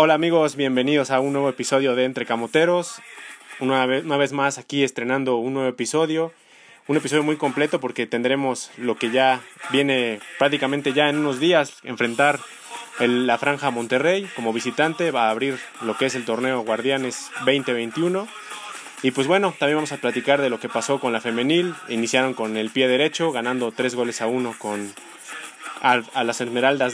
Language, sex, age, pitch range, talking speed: Spanish, male, 20-39, 120-150 Hz, 175 wpm